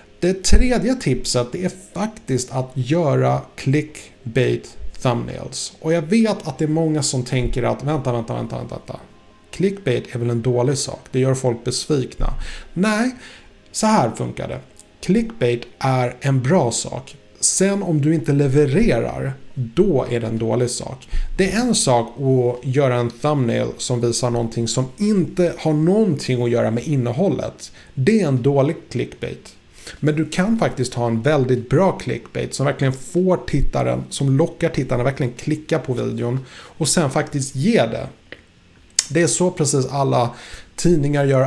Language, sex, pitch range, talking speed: Swedish, male, 125-165 Hz, 160 wpm